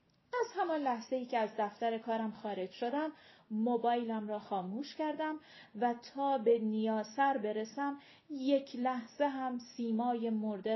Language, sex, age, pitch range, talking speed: Persian, female, 30-49, 210-280 Hz, 130 wpm